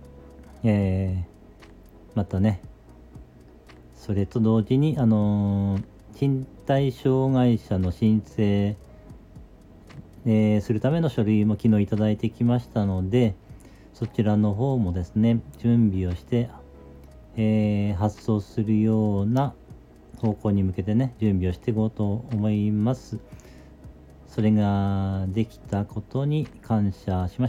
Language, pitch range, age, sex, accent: Japanese, 95-115 Hz, 40-59, male, native